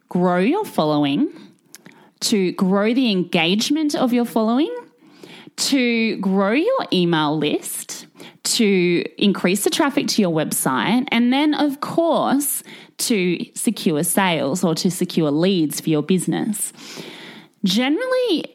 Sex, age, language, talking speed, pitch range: female, 20-39, English, 120 wpm, 170-250 Hz